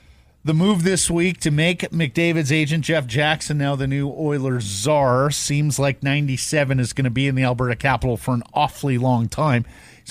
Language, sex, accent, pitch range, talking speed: English, male, American, 125-195 Hz, 190 wpm